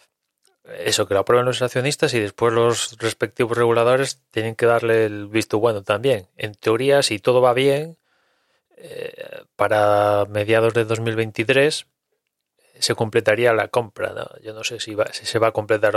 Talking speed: 165 wpm